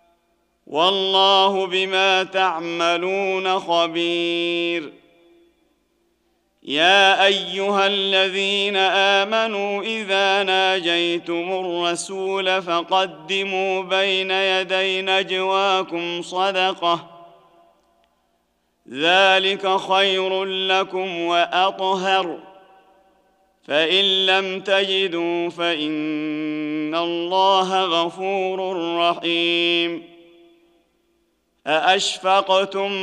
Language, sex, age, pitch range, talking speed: Arabic, male, 40-59, 170-195 Hz, 50 wpm